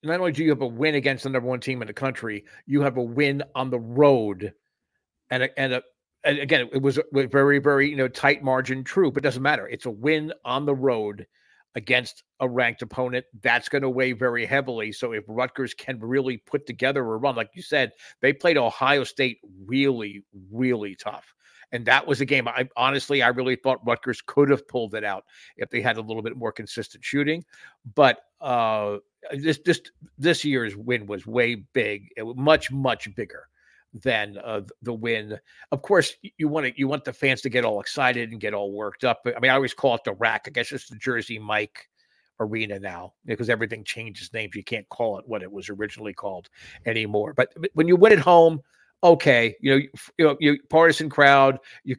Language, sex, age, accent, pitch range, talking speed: English, male, 50-69, American, 115-140 Hz, 210 wpm